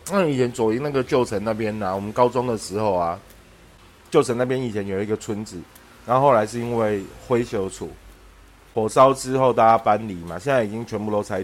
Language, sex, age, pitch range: Chinese, male, 30-49, 95-125 Hz